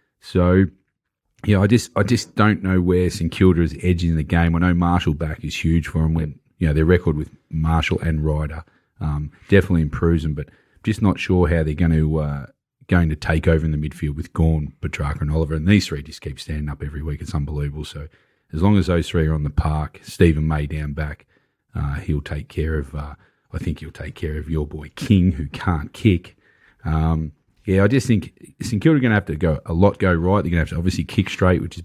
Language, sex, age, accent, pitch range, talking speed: English, male, 30-49, Australian, 80-95 Hz, 240 wpm